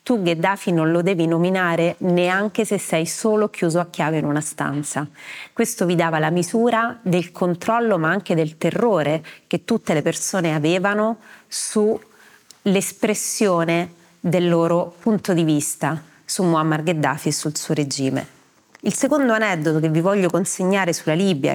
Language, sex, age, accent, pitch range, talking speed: Italian, female, 30-49, native, 160-200 Hz, 150 wpm